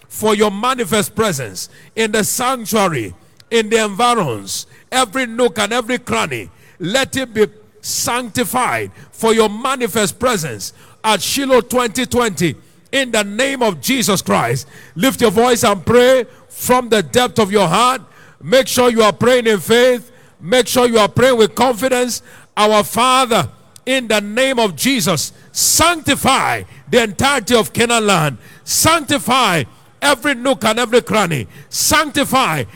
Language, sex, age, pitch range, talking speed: English, male, 50-69, 205-255 Hz, 140 wpm